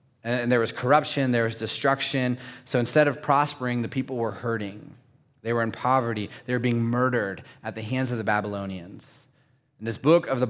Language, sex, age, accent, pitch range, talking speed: English, male, 20-39, American, 115-135 Hz, 195 wpm